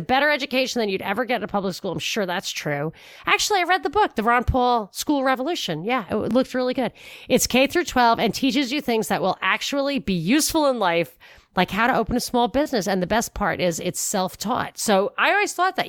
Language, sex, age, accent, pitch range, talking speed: English, female, 30-49, American, 180-245 Hz, 240 wpm